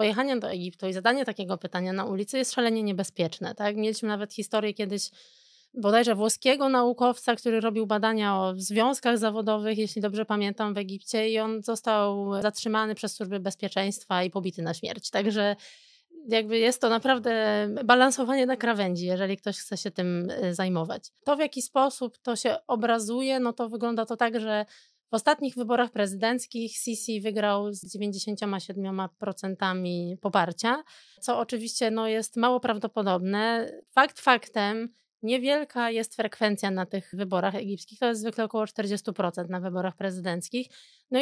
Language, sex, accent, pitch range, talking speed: Polish, female, native, 200-240 Hz, 150 wpm